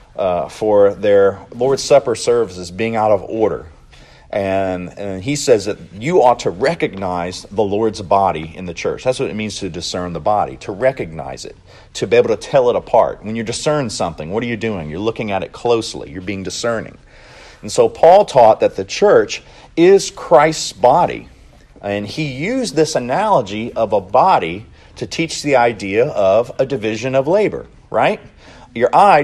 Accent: American